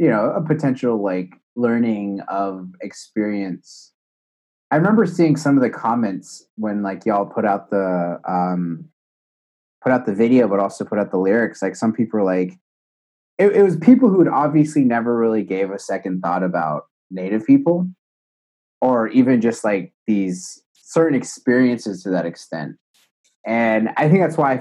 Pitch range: 90-120 Hz